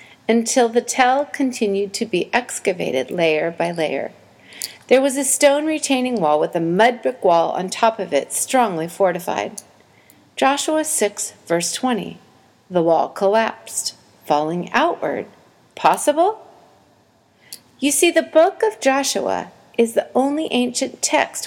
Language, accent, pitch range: English, American, 185-270 Hz